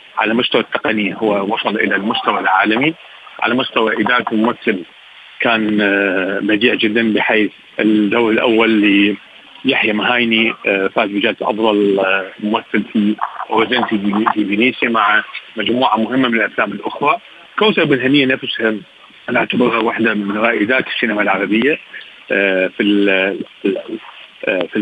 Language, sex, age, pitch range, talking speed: Arabic, male, 40-59, 105-125 Hz, 110 wpm